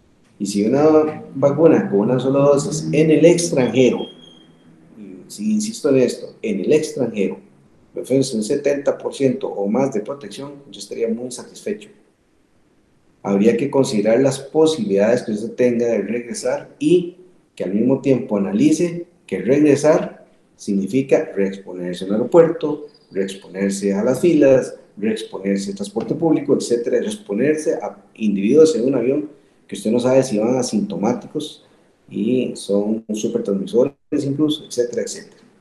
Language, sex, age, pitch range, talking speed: Spanish, male, 50-69, 105-155 Hz, 140 wpm